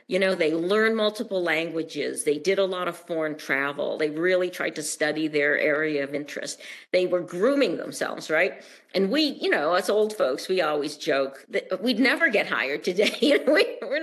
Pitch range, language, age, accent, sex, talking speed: 170-220 Hz, English, 50-69, American, female, 190 wpm